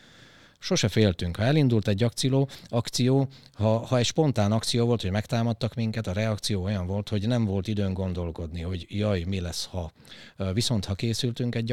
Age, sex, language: 30-49, male, Hungarian